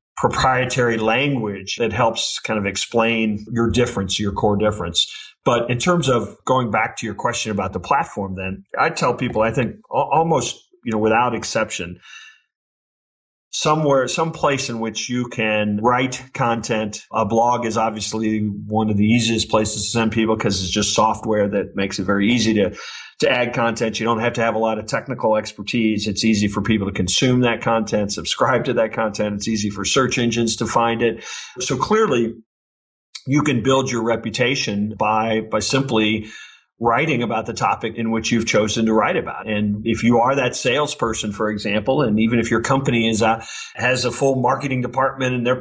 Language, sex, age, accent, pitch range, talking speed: English, male, 40-59, American, 110-125 Hz, 185 wpm